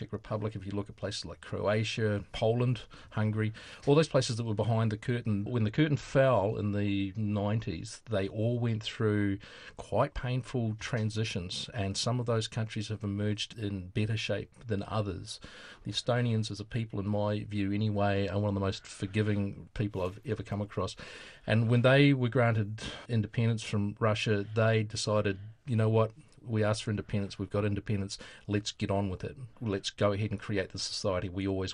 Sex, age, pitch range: male, 40-59, 100-115 Hz